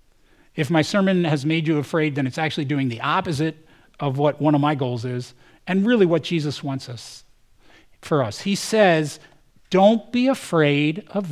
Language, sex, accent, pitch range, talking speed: English, male, American, 140-200 Hz, 180 wpm